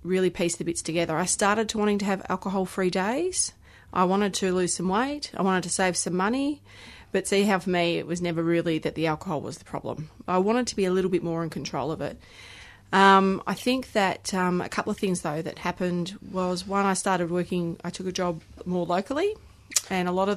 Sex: female